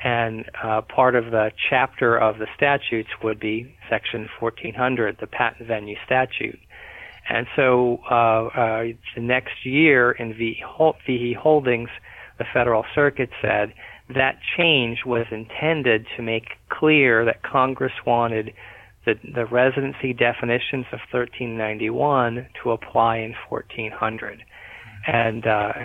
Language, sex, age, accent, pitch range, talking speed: English, male, 40-59, American, 110-125 Hz, 120 wpm